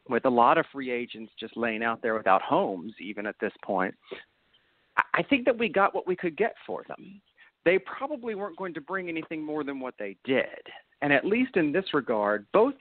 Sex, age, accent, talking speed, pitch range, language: male, 40-59, American, 215 wpm, 110-160 Hz, English